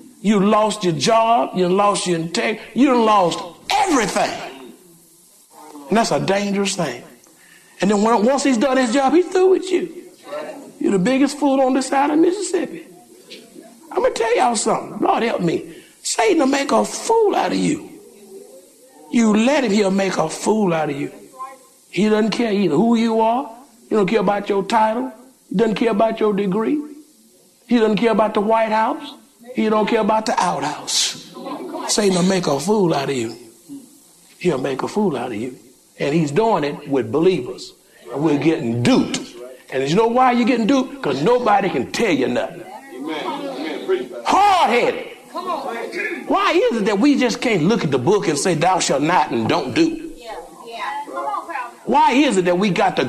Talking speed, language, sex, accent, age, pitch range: 180 wpm, English, male, American, 60-79, 200-285 Hz